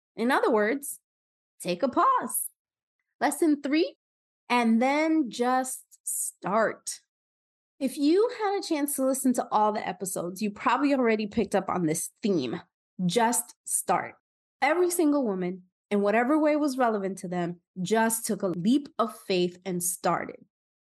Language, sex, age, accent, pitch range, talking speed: English, female, 20-39, American, 195-275 Hz, 145 wpm